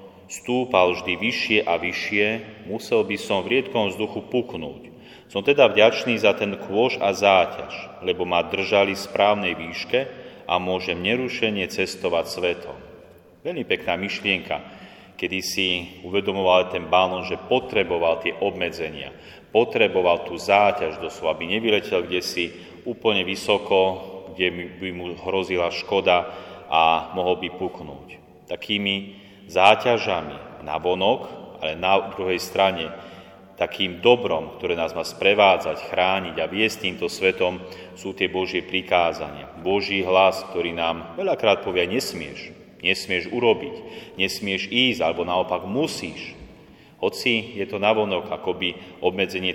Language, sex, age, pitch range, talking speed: Slovak, male, 30-49, 90-100 Hz, 125 wpm